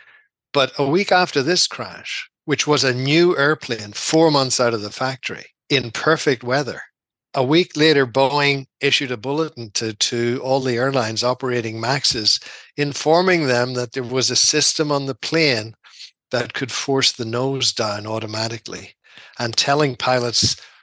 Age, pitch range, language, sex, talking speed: 60-79, 115-140 Hz, English, male, 155 wpm